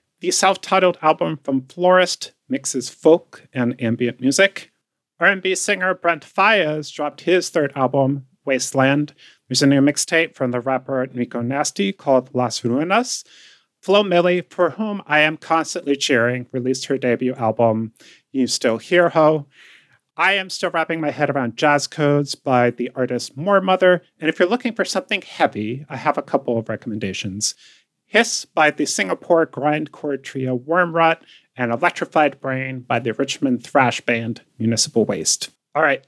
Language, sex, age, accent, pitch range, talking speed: English, male, 30-49, American, 130-180 Hz, 155 wpm